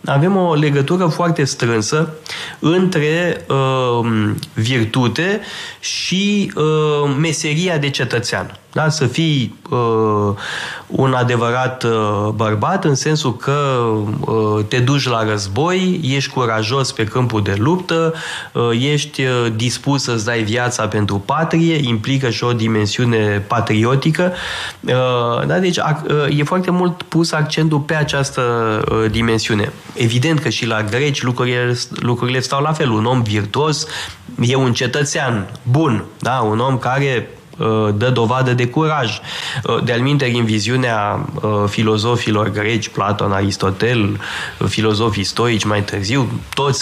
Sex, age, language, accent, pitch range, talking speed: male, 20-39, Romanian, native, 110-145 Hz, 135 wpm